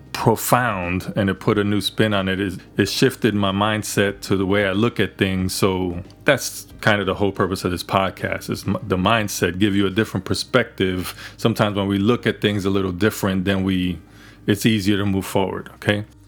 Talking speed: 205 wpm